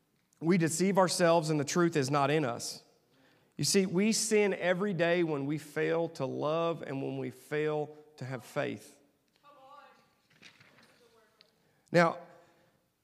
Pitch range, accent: 130-165 Hz, American